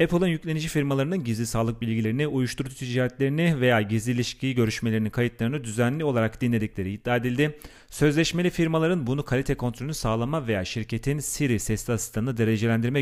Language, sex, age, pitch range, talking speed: Turkish, male, 40-59, 115-145 Hz, 140 wpm